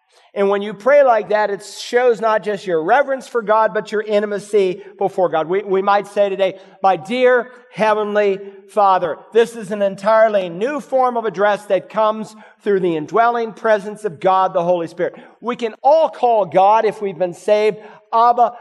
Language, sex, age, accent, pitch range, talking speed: English, male, 50-69, American, 190-225 Hz, 185 wpm